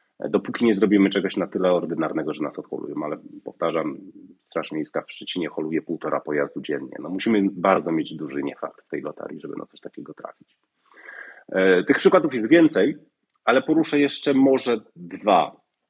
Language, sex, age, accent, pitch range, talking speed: Polish, male, 30-49, native, 90-105 Hz, 160 wpm